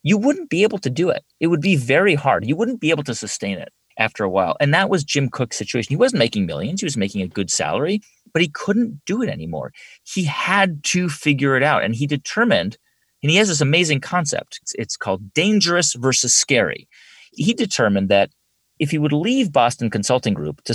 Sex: male